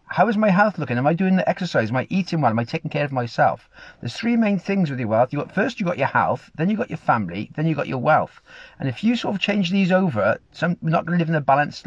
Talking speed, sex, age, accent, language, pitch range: 310 wpm, male, 40-59, British, English, 120-165 Hz